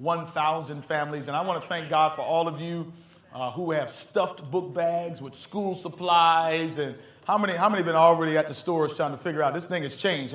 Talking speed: 225 wpm